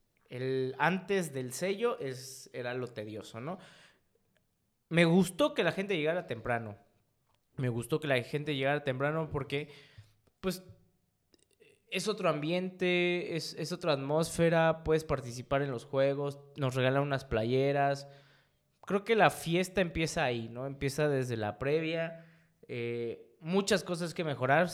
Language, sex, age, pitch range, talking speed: Spanish, male, 20-39, 120-160 Hz, 135 wpm